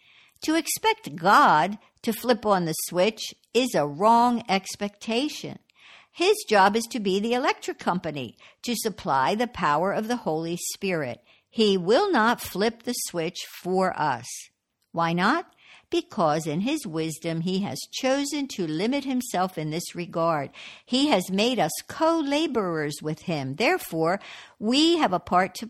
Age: 60-79